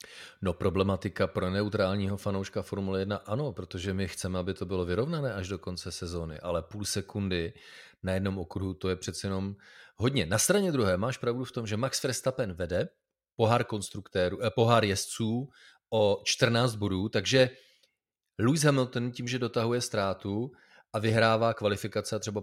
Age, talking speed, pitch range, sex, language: 30-49, 160 wpm, 95-115 Hz, male, Czech